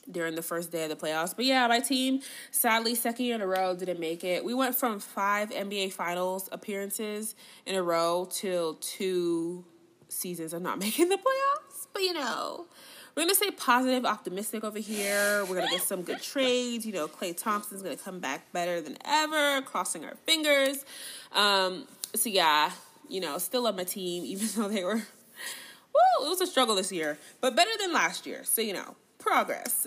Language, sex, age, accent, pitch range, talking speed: English, female, 20-39, American, 180-255 Hz, 200 wpm